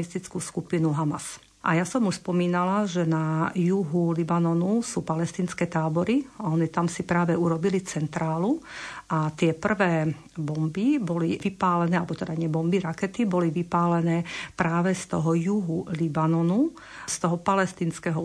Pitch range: 165-195 Hz